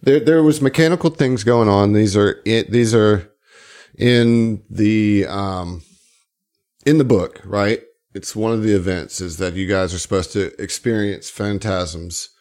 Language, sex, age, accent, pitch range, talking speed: English, male, 40-59, American, 95-120 Hz, 160 wpm